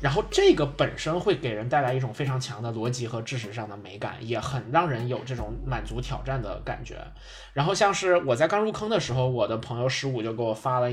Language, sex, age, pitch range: Chinese, male, 20-39, 120-155 Hz